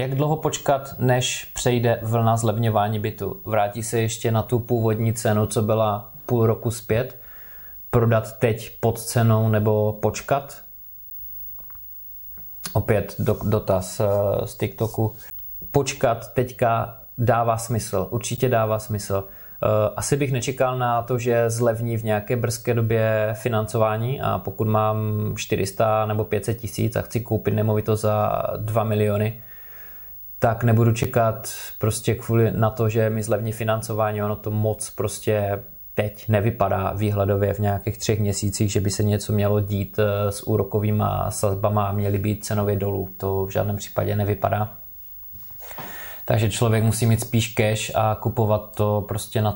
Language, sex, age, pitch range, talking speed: Czech, male, 20-39, 105-115 Hz, 140 wpm